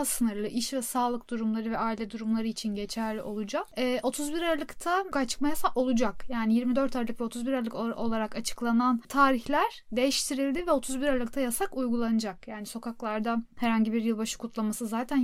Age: 10-29